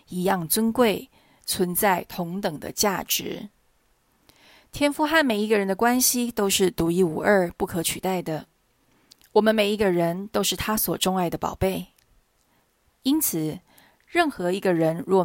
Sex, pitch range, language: female, 175-225 Hz, Chinese